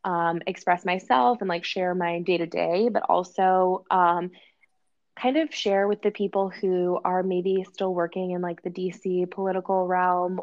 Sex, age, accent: female, 20-39, American